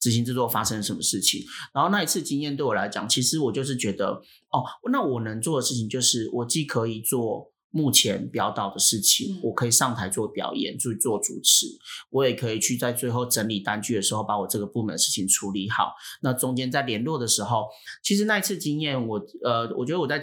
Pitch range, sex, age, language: 110-145 Hz, male, 30-49, Chinese